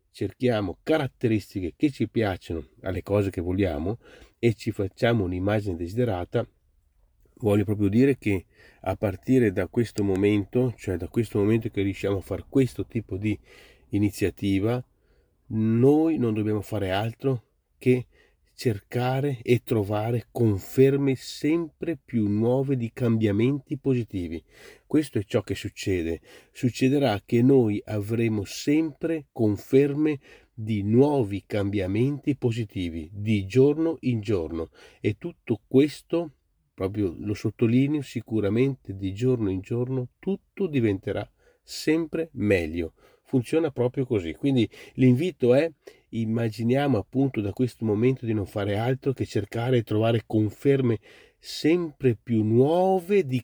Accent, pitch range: native, 100-130 Hz